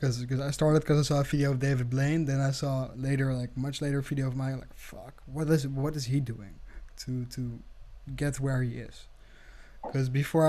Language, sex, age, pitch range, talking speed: English, male, 10-29, 135-160 Hz, 215 wpm